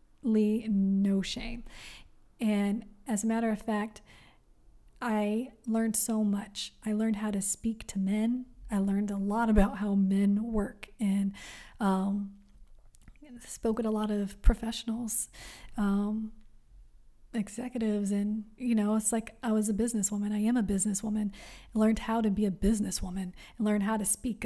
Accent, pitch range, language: American, 200-230 Hz, English